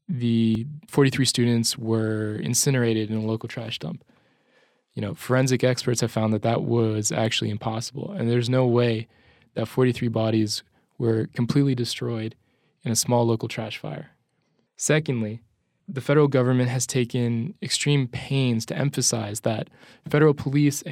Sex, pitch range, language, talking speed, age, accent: male, 115-130 Hz, English, 145 wpm, 20-39, American